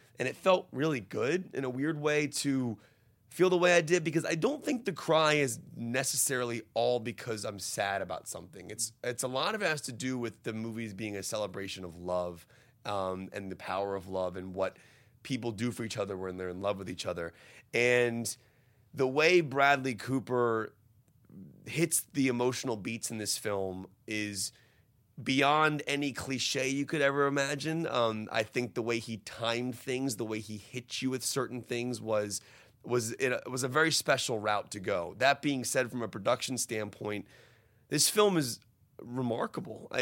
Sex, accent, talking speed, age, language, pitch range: male, American, 185 wpm, 30-49, English, 110-135 Hz